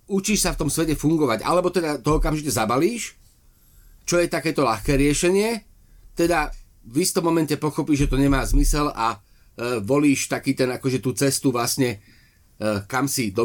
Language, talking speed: Slovak, 170 wpm